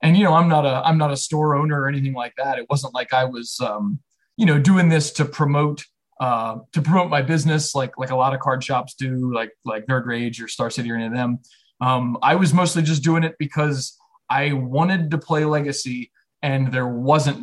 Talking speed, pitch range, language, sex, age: 230 wpm, 125-155 Hz, English, male, 20-39